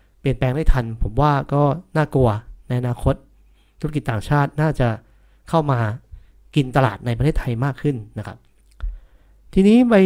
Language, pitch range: Thai, 125-160 Hz